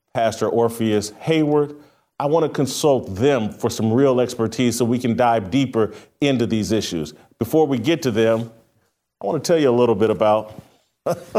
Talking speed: 180 wpm